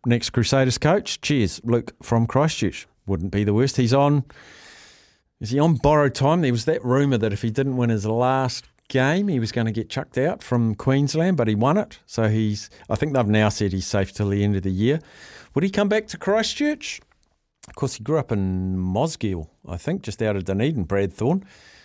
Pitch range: 110-145 Hz